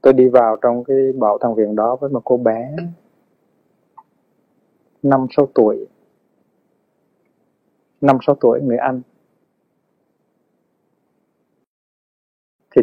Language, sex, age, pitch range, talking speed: Vietnamese, male, 20-39, 120-140 Hz, 95 wpm